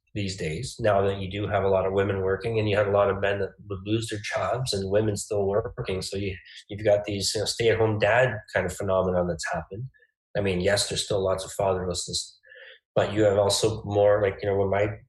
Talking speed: 245 wpm